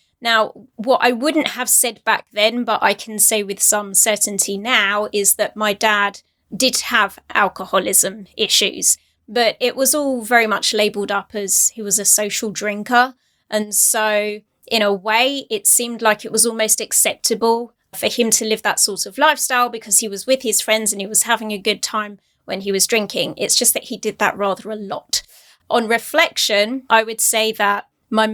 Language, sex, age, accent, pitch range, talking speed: English, female, 20-39, British, 210-240 Hz, 195 wpm